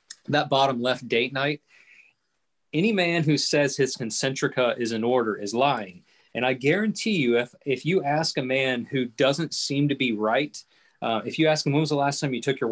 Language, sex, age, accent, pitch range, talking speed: English, male, 30-49, American, 125-165 Hz, 210 wpm